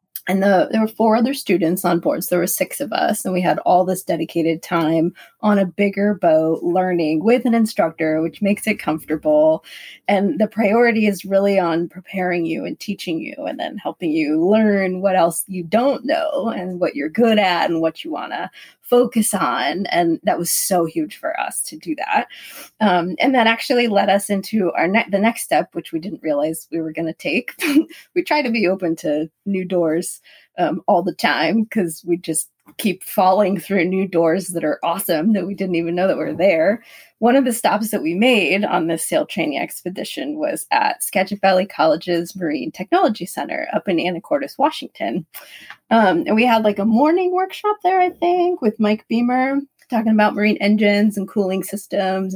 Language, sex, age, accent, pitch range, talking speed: English, female, 20-39, American, 175-245 Hz, 200 wpm